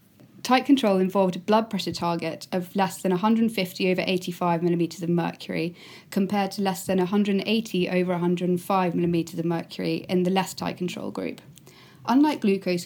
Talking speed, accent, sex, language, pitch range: 160 wpm, British, female, English, 180-205 Hz